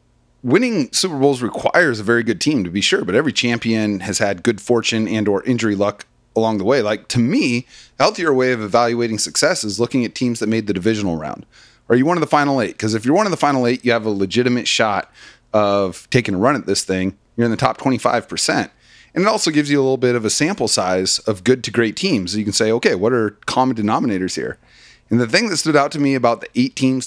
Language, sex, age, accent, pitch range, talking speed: English, male, 30-49, American, 105-130 Hz, 250 wpm